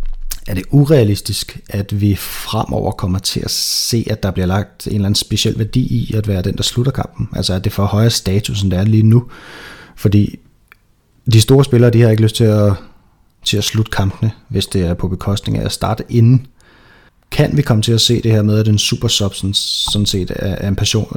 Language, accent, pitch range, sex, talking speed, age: Danish, native, 100-120 Hz, male, 220 wpm, 30-49